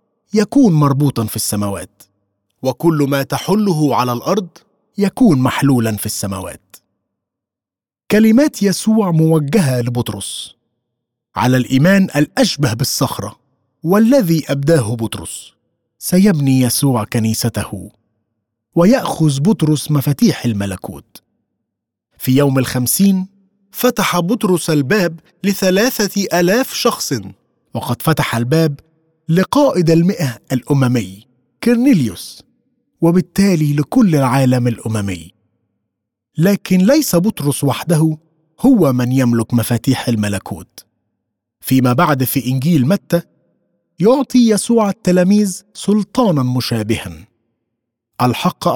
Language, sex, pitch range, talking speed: Arabic, male, 120-195 Hz, 85 wpm